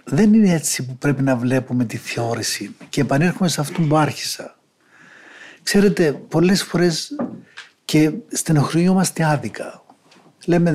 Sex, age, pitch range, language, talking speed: male, 60-79, 130-170 Hz, Greek, 130 wpm